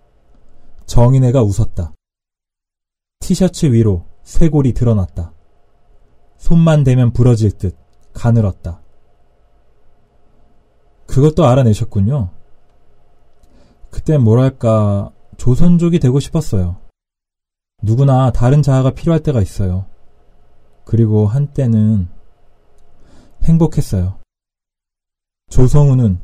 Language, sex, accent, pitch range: Korean, male, native, 95-130 Hz